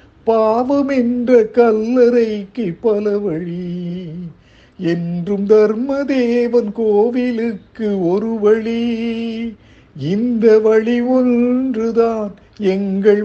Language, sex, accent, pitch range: Tamil, male, native, 145-220 Hz